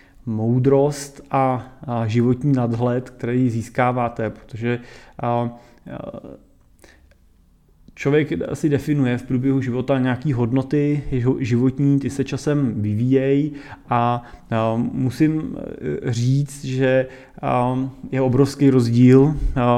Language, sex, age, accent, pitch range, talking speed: Czech, male, 30-49, native, 115-140 Hz, 80 wpm